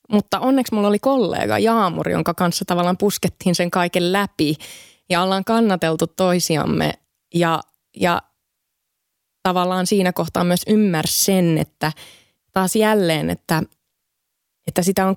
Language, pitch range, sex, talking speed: Finnish, 180-230 Hz, female, 125 wpm